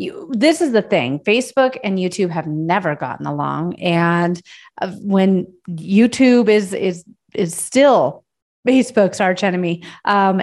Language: English